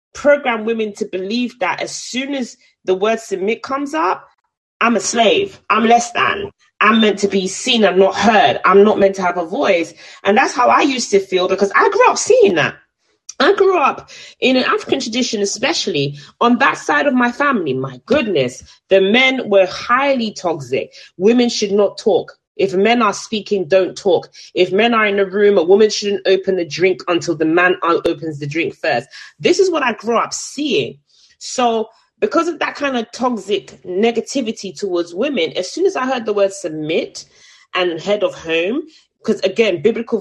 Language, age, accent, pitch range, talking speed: English, 30-49, British, 185-255 Hz, 195 wpm